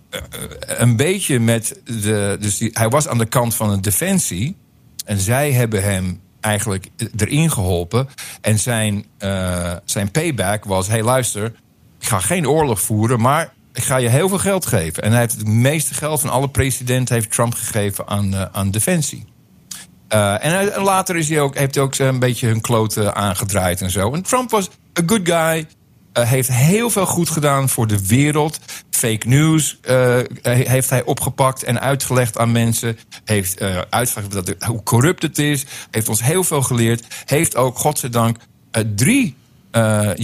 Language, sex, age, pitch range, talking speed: Dutch, male, 50-69, 105-140 Hz, 170 wpm